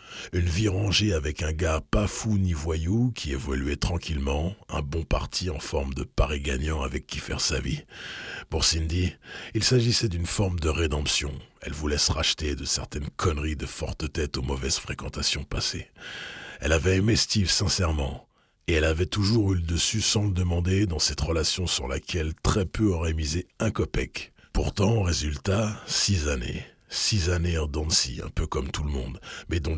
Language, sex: French, male